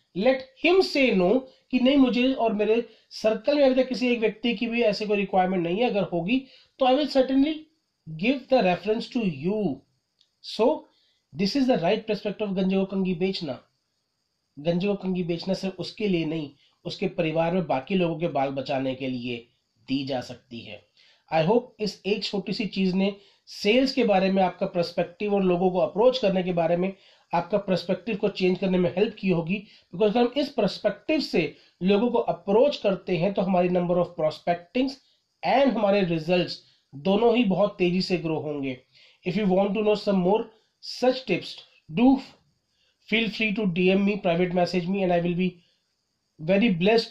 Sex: male